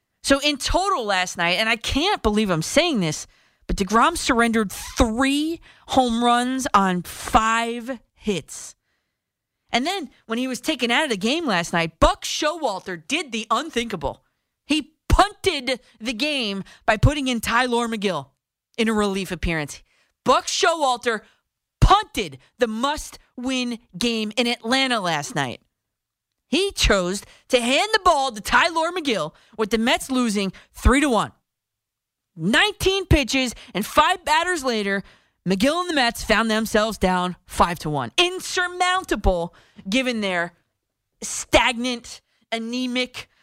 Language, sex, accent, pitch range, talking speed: English, female, American, 190-290 Hz, 135 wpm